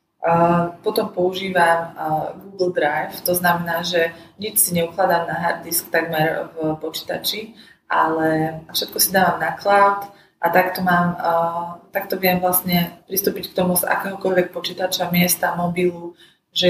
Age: 20-39